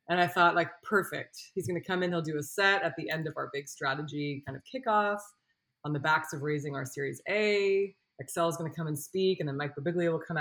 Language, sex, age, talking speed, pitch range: English, female, 20-39, 260 wpm, 155-215 Hz